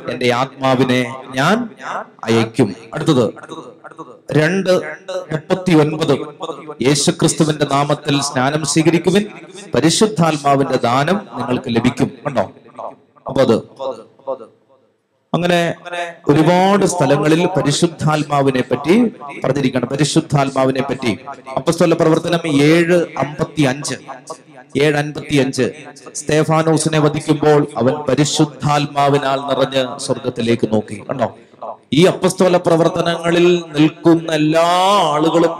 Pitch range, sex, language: 135-165 Hz, male, Malayalam